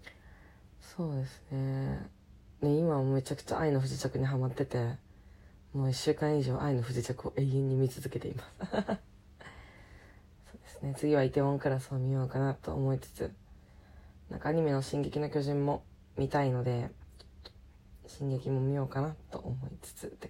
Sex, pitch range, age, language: female, 100-160 Hz, 20-39, Japanese